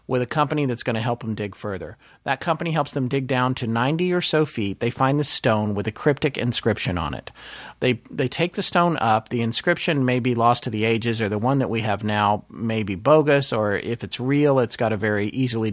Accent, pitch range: American, 115-155 Hz